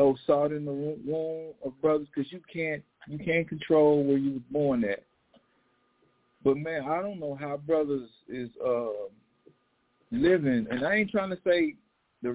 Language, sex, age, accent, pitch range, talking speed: English, male, 50-69, American, 135-180 Hz, 165 wpm